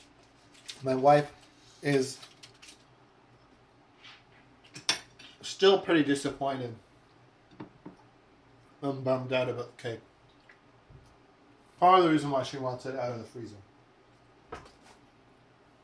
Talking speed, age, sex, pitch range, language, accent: 90 wpm, 30-49, male, 130-145 Hz, English, American